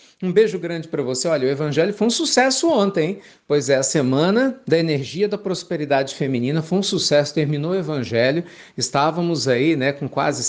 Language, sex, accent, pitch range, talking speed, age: Portuguese, male, Brazilian, 135-180 Hz, 195 wpm, 50-69